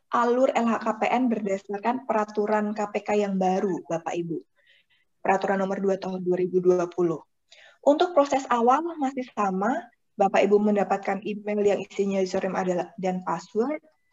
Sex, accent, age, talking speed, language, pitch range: female, native, 20-39, 120 wpm, Indonesian, 195-265 Hz